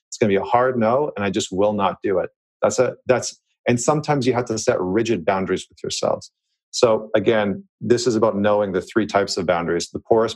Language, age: English, 40-59